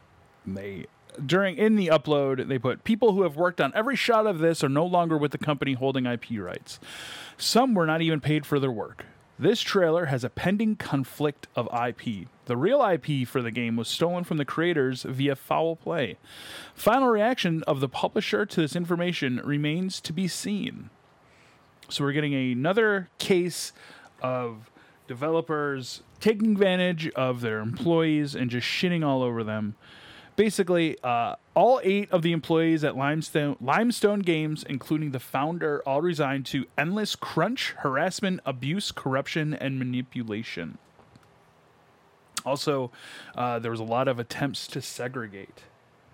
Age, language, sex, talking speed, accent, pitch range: 30-49, English, male, 155 wpm, American, 130-180 Hz